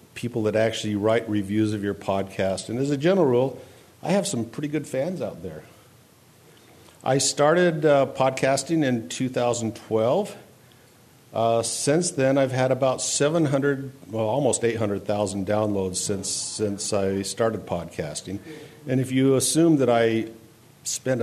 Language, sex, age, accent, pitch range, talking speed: English, male, 50-69, American, 105-135 Hz, 140 wpm